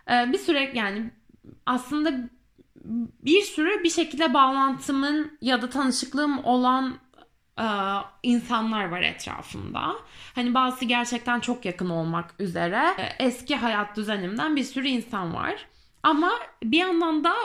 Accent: native